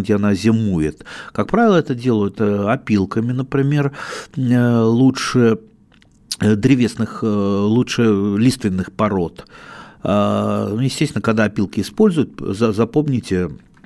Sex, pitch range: male, 95-125 Hz